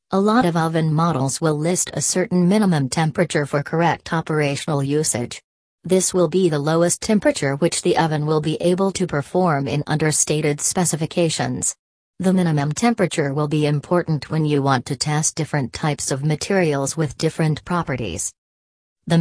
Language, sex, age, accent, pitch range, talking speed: English, female, 40-59, American, 150-170 Hz, 160 wpm